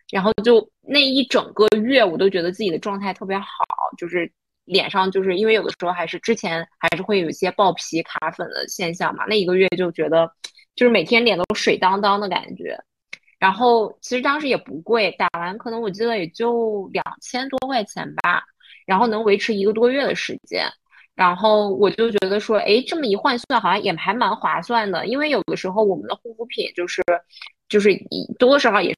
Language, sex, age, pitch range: Chinese, female, 20-39, 180-235 Hz